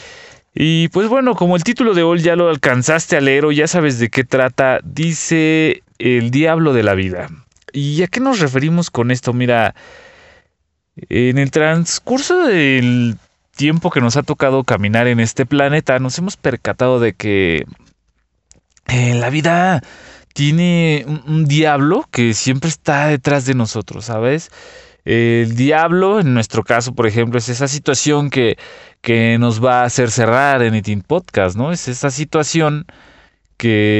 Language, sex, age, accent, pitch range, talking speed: English, male, 20-39, Mexican, 115-155 Hz, 155 wpm